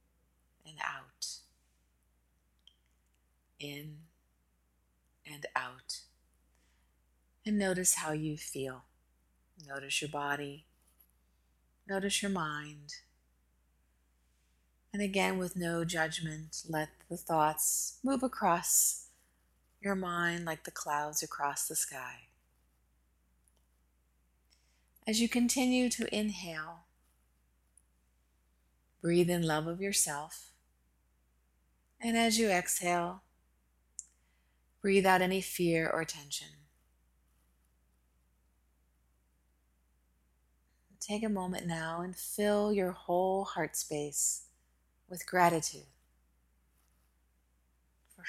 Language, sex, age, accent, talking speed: English, female, 30-49, American, 80 wpm